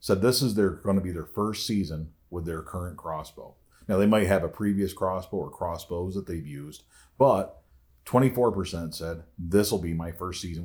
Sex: male